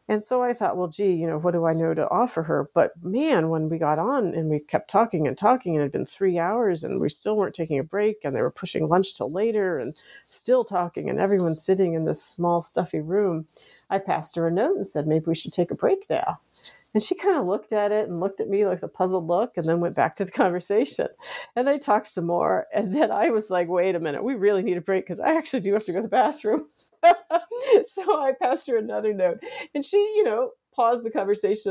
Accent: American